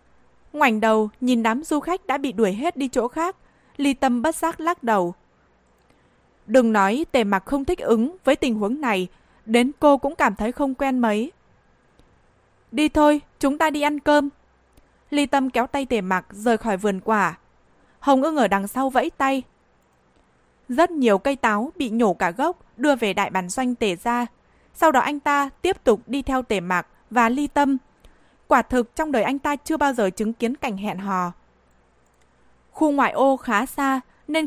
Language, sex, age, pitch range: Vietnamese, female, 20-39, 205-280 Hz